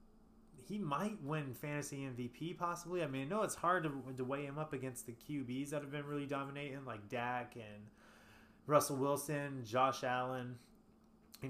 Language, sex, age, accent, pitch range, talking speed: English, male, 20-39, American, 120-150 Hz, 170 wpm